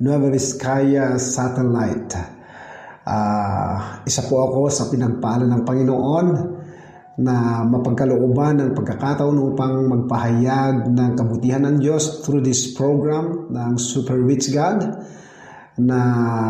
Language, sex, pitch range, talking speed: Filipino, male, 120-145 Hz, 105 wpm